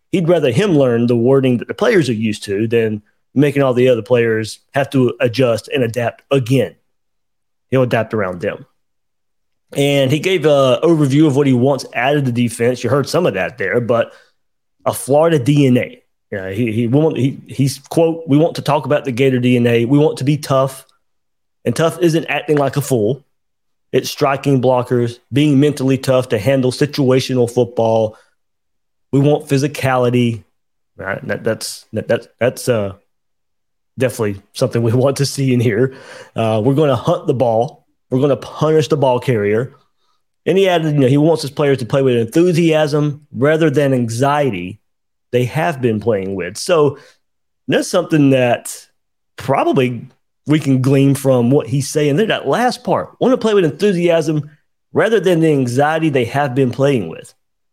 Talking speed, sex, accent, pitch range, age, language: 180 wpm, male, American, 120-150 Hz, 30-49, English